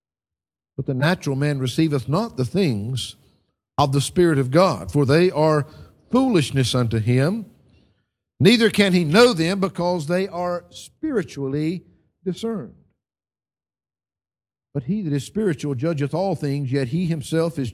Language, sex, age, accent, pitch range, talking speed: English, male, 60-79, American, 120-200 Hz, 140 wpm